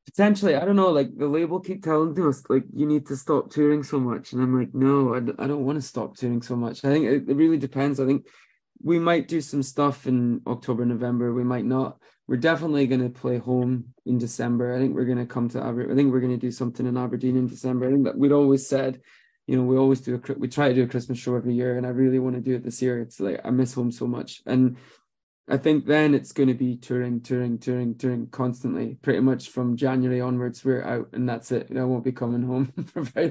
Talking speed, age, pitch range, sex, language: 260 wpm, 20-39, 125-140 Hz, male, English